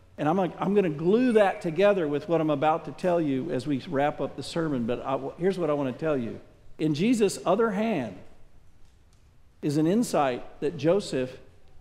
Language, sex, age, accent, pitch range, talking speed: English, male, 50-69, American, 135-200 Hz, 205 wpm